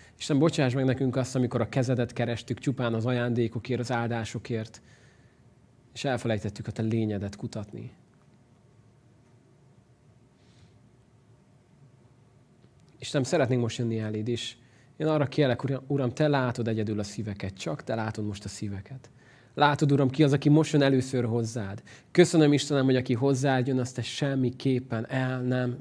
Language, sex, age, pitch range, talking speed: Hungarian, male, 30-49, 115-135 Hz, 140 wpm